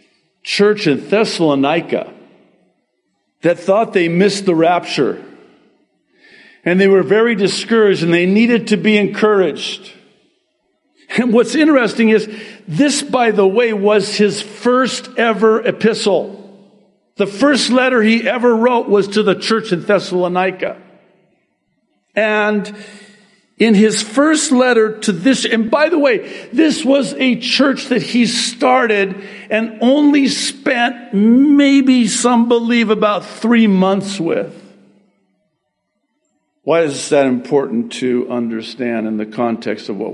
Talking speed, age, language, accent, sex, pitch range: 125 wpm, 50-69, English, American, male, 175-240 Hz